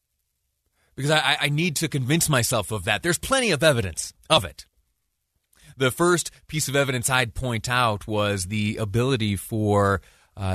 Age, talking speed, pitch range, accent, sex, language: 30-49, 160 wpm, 95-125 Hz, American, male, English